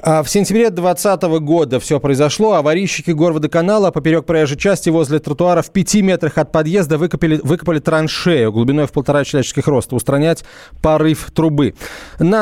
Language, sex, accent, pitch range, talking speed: Russian, male, native, 150-180 Hz, 150 wpm